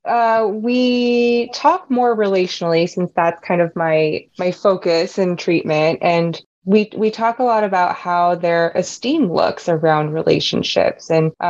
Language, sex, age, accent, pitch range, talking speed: English, female, 20-39, American, 165-190 Hz, 145 wpm